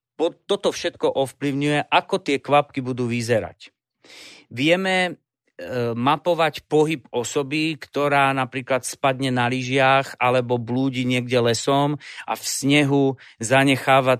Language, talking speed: Slovak, 105 wpm